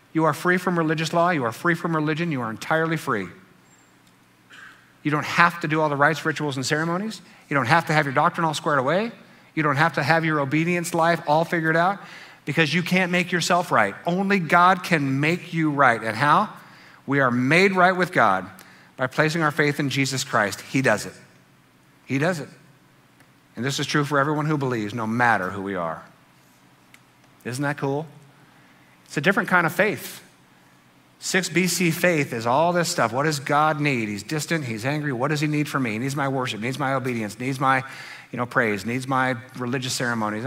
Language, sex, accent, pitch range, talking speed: English, male, American, 120-165 Hz, 205 wpm